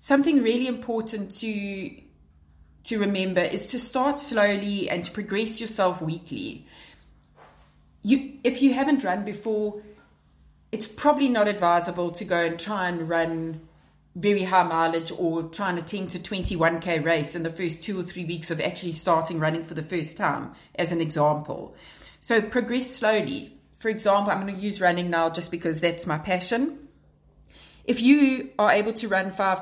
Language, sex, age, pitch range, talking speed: English, female, 30-49, 165-215 Hz, 170 wpm